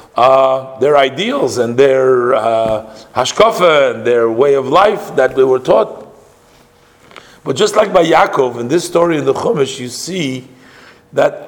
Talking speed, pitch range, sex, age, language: 155 wpm, 120-160 Hz, male, 50-69, English